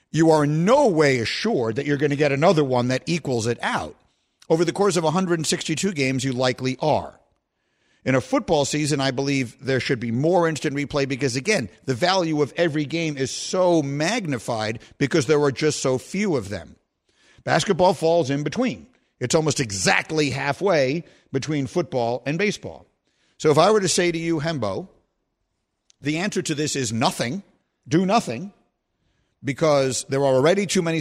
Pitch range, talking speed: 130-165 Hz, 175 wpm